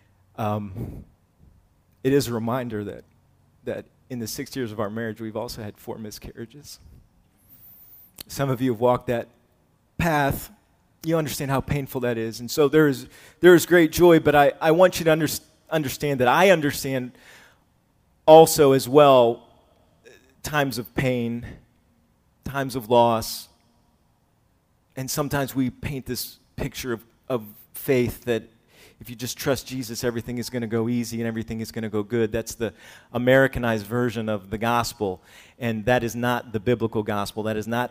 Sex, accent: male, American